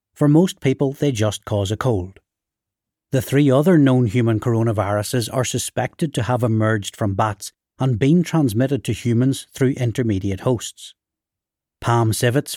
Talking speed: 150 wpm